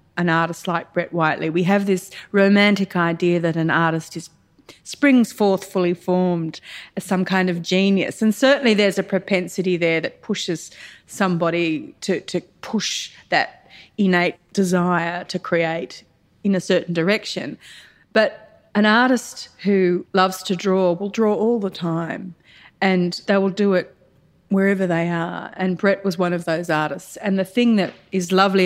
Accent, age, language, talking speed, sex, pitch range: Australian, 30-49, English, 160 wpm, female, 170-200 Hz